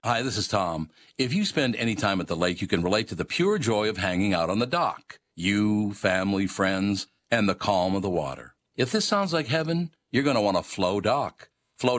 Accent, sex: American, male